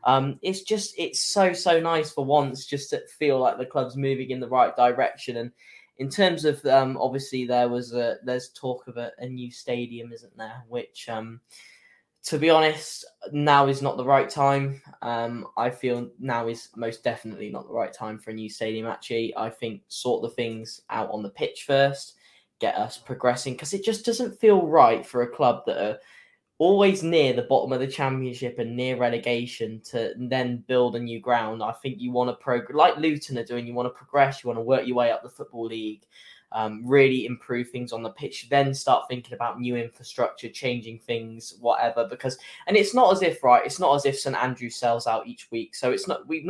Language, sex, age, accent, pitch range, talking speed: English, male, 10-29, British, 115-140 Hz, 215 wpm